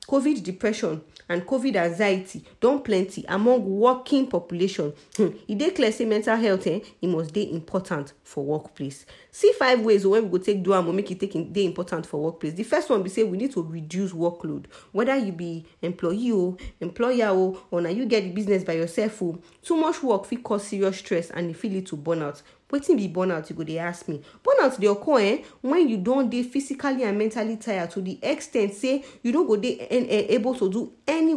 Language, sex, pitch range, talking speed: English, female, 180-245 Hz, 210 wpm